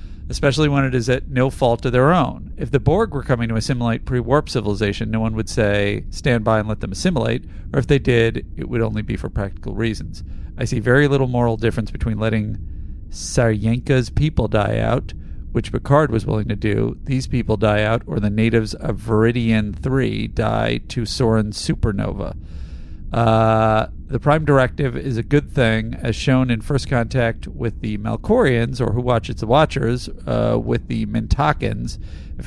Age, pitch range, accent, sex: 40-59, 105-125 Hz, American, male